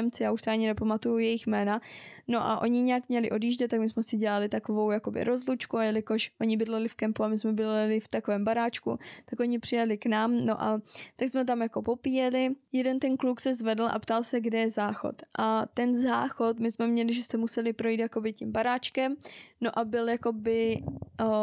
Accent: native